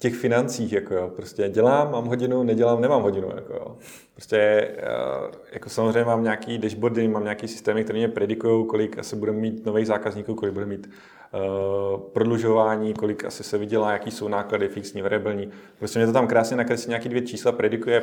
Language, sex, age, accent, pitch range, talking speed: Czech, male, 30-49, native, 105-115 Hz, 185 wpm